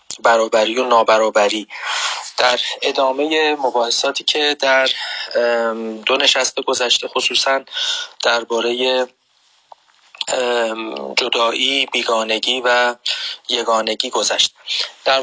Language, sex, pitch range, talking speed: Persian, male, 120-135 Hz, 75 wpm